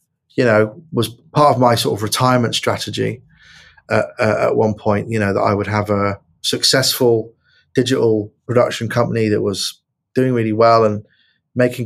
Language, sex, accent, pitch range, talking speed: English, male, British, 105-125 Hz, 165 wpm